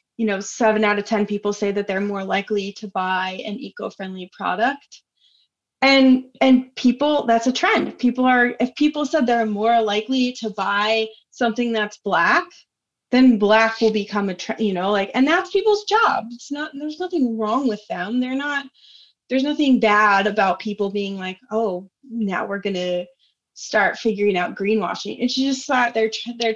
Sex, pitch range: female, 200-245 Hz